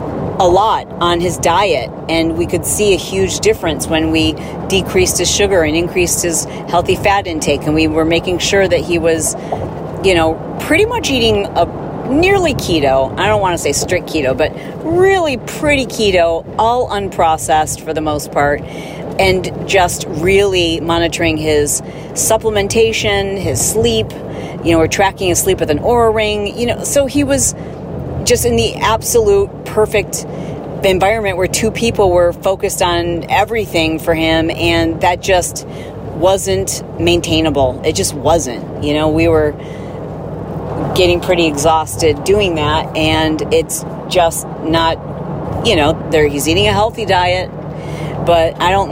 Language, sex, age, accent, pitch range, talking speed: English, female, 40-59, American, 160-190 Hz, 155 wpm